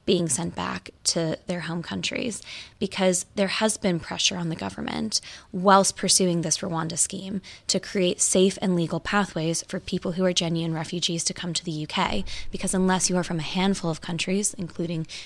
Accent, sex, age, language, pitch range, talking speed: American, female, 10-29, English, 175-195 Hz, 185 wpm